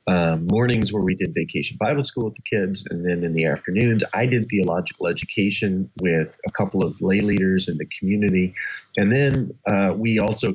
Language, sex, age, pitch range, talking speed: English, male, 30-49, 90-120 Hz, 195 wpm